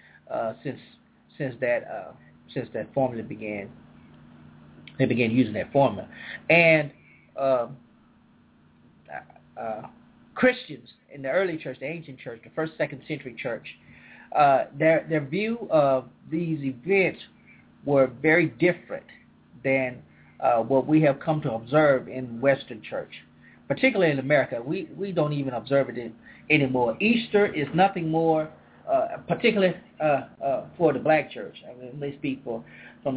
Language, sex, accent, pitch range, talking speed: English, male, American, 130-170 Hz, 145 wpm